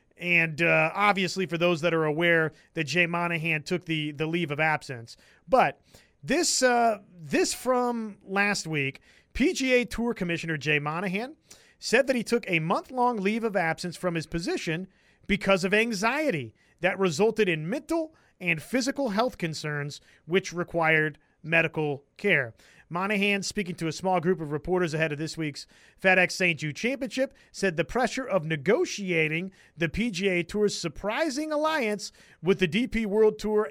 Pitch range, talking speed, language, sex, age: 165-215 Hz, 155 wpm, English, male, 30-49